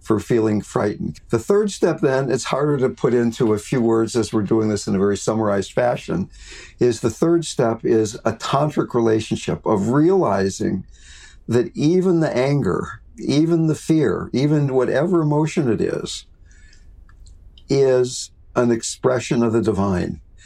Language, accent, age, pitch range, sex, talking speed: English, American, 60-79, 105-135 Hz, male, 155 wpm